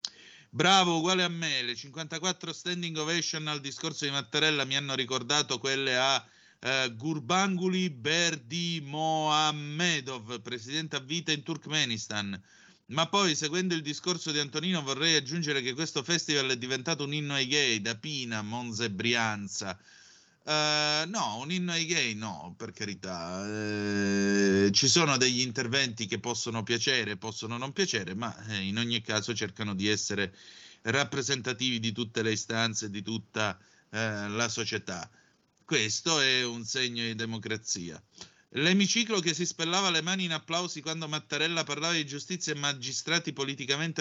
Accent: native